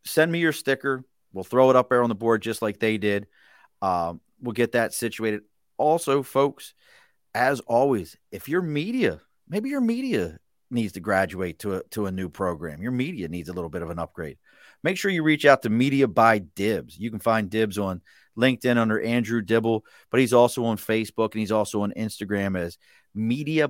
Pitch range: 100-120 Hz